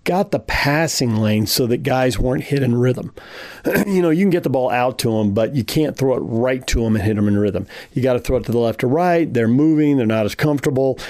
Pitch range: 110-135 Hz